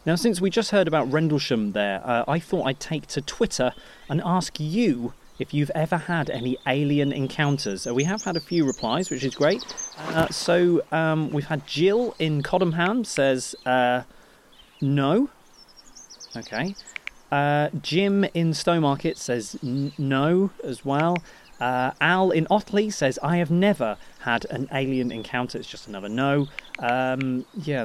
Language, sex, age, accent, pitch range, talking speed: English, male, 30-49, British, 130-170 Hz, 160 wpm